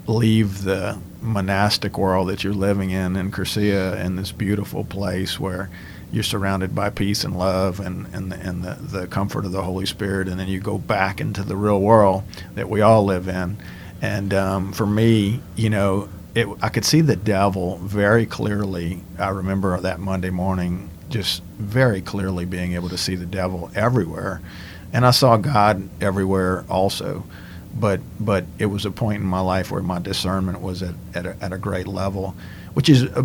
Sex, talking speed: male, 185 wpm